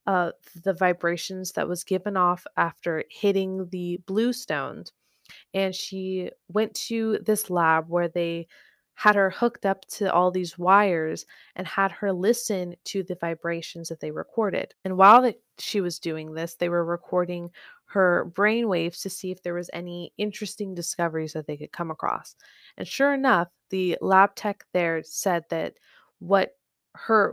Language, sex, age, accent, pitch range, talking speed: English, female, 20-39, American, 175-210 Hz, 165 wpm